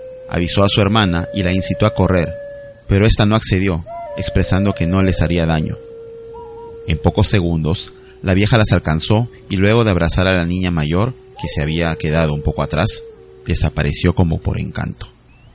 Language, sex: Spanish, male